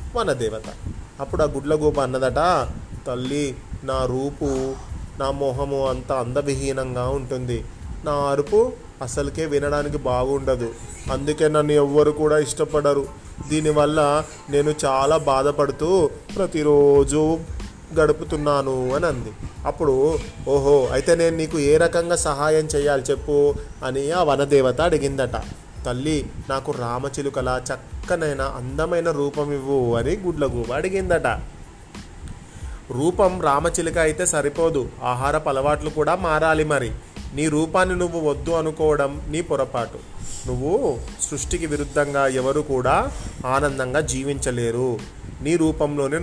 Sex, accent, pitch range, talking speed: male, native, 130-155 Hz, 105 wpm